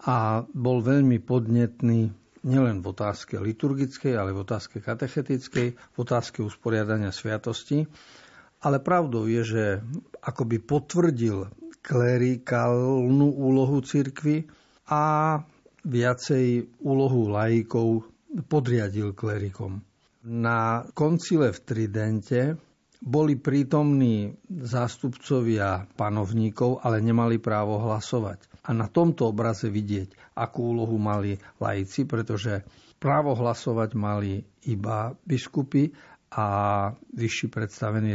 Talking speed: 100 wpm